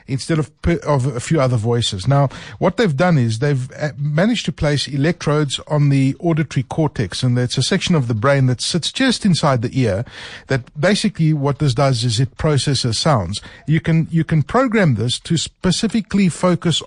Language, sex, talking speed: English, male, 185 wpm